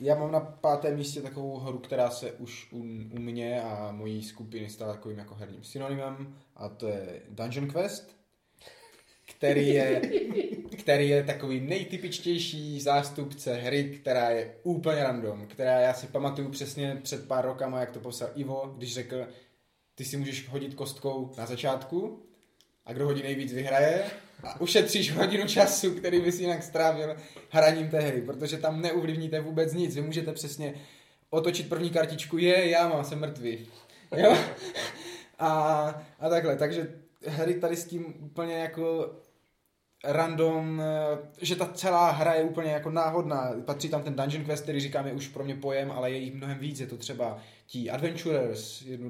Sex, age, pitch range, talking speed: male, 20-39, 125-160 Hz, 165 wpm